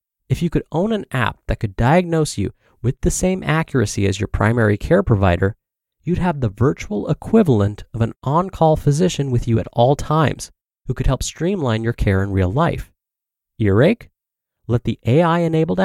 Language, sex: English, male